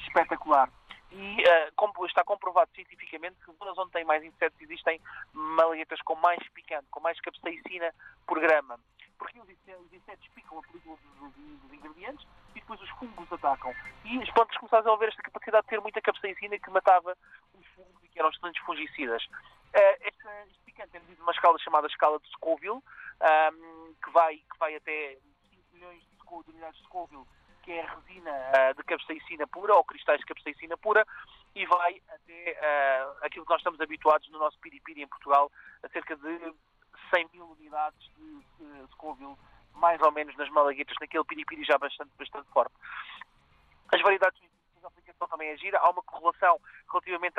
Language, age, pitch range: Portuguese, 20-39, 155-185 Hz